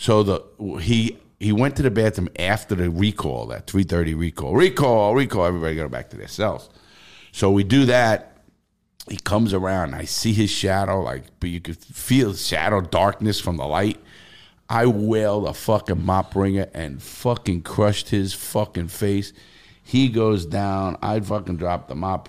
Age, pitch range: 50-69, 85-105 Hz